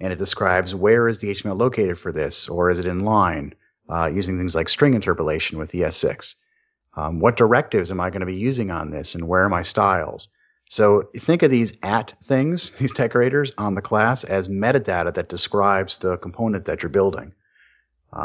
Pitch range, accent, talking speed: 95-125 Hz, American, 200 wpm